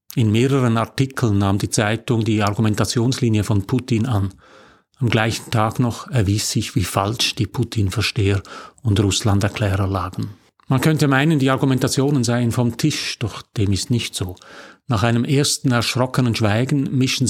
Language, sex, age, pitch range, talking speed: German, male, 40-59, 110-135 Hz, 150 wpm